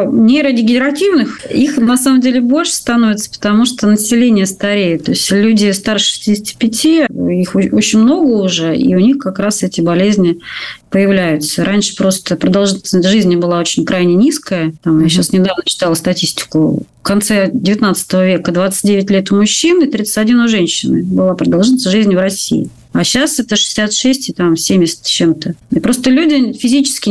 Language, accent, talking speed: Russian, native, 155 wpm